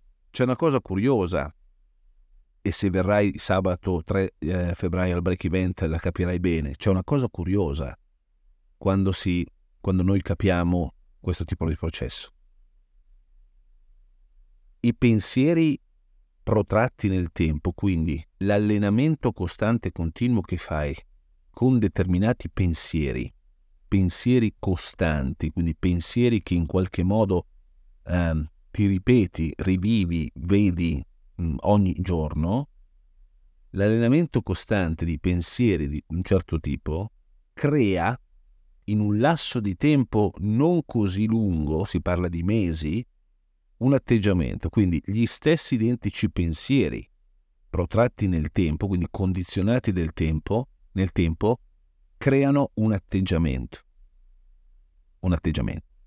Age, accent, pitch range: 40-59, native, 80-105 Hz